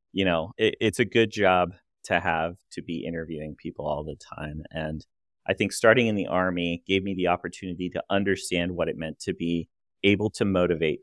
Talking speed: 200 wpm